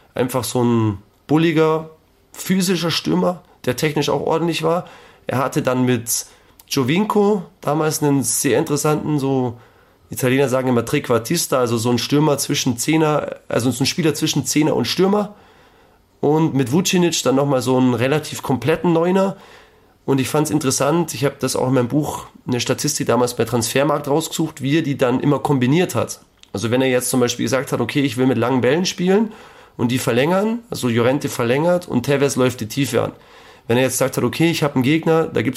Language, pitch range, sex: German, 125-160 Hz, male